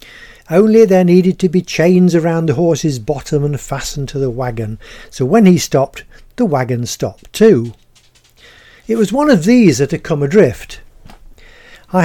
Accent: British